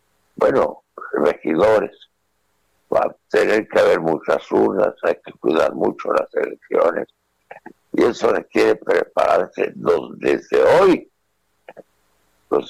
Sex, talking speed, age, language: male, 105 wpm, 60-79, Spanish